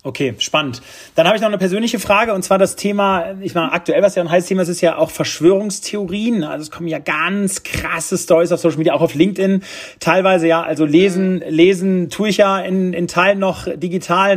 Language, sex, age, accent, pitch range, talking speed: German, male, 30-49, German, 160-190 Hz, 215 wpm